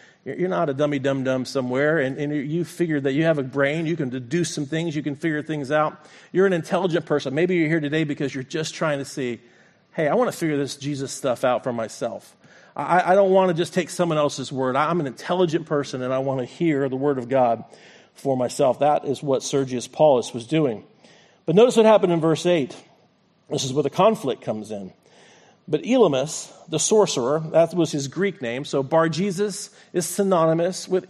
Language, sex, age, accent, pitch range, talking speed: English, male, 40-59, American, 145-185 Hz, 210 wpm